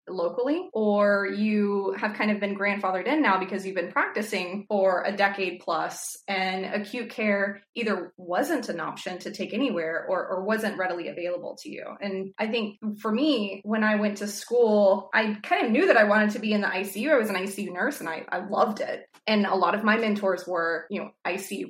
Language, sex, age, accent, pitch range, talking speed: English, female, 20-39, American, 190-230 Hz, 215 wpm